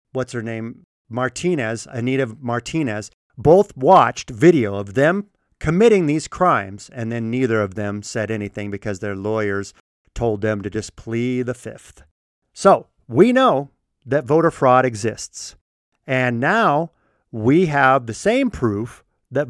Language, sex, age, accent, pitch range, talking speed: English, male, 50-69, American, 110-165 Hz, 140 wpm